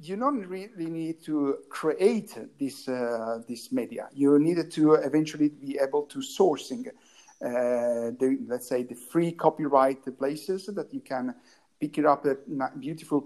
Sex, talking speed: male, 155 wpm